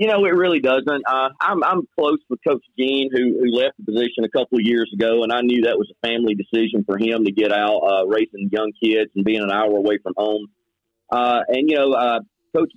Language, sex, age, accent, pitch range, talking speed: English, male, 40-59, American, 110-135 Hz, 245 wpm